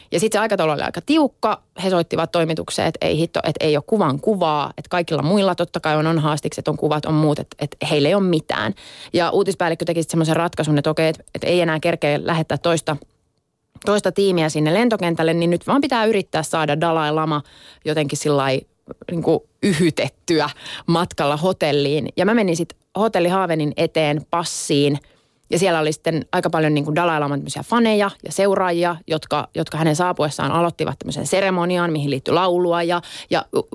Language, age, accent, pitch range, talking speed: Finnish, 30-49, native, 150-180 Hz, 175 wpm